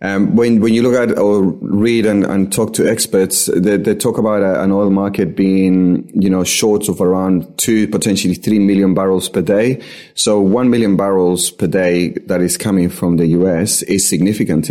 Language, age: English, 30-49